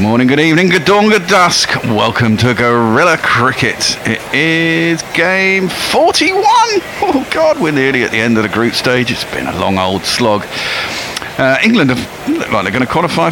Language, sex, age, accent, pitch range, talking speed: English, male, 50-69, British, 110-145 Hz, 180 wpm